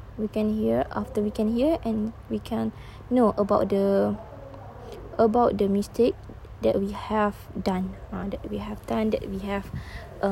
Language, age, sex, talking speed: Malay, 20-39, female, 170 wpm